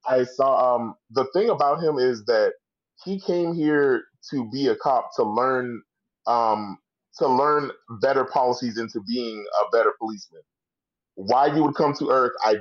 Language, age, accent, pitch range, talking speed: English, 20-39, American, 120-190 Hz, 165 wpm